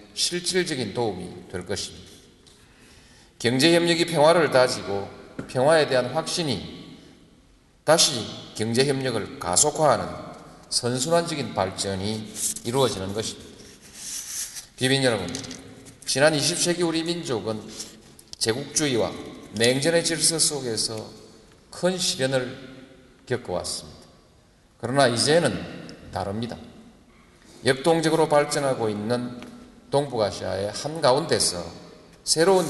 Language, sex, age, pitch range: Korean, male, 40-59, 110-150 Hz